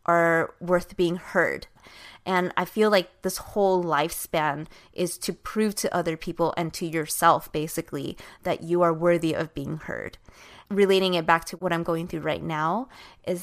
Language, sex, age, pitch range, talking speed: English, female, 20-39, 165-195 Hz, 175 wpm